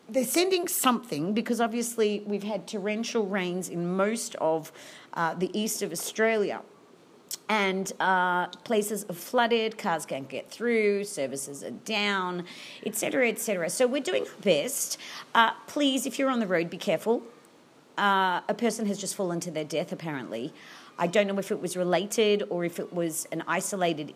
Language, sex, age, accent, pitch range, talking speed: English, female, 40-59, Australian, 175-235 Hz, 175 wpm